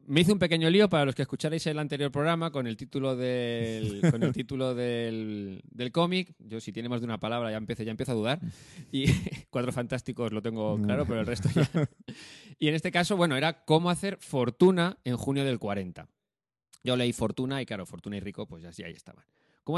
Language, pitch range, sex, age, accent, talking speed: Spanish, 105-145 Hz, male, 20-39, Spanish, 205 wpm